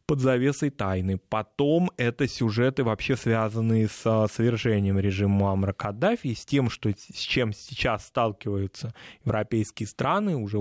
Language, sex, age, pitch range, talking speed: Russian, male, 20-39, 110-135 Hz, 130 wpm